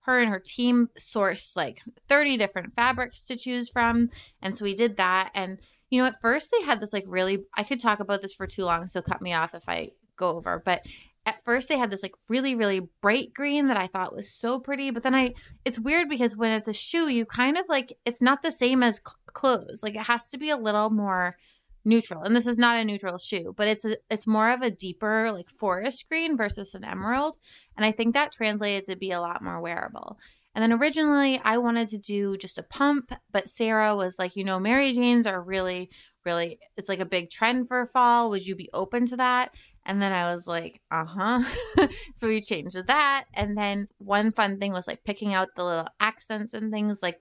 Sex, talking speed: female, 230 wpm